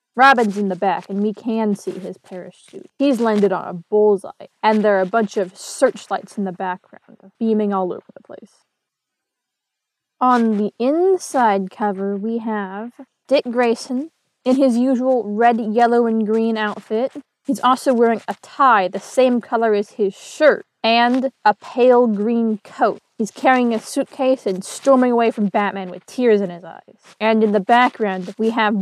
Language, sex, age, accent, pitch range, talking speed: English, female, 20-39, American, 205-250 Hz, 170 wpm